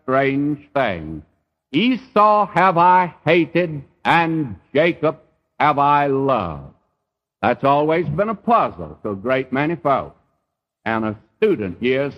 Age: 60-79